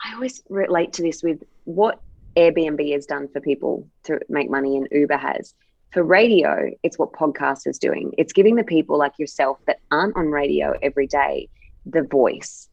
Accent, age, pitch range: Australian, 20-39, 145-195 Hz